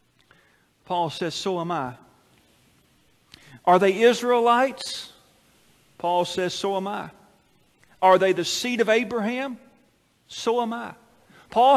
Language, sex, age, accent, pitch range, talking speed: English, male, 40-59, American, 190-240 Hz, 115 wpm